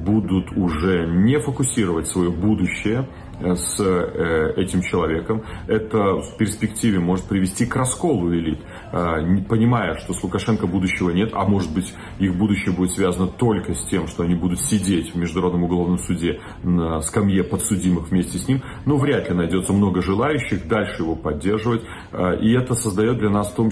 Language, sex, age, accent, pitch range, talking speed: Russian, male, 40-59, native, 90-110 Hz, 160 wpm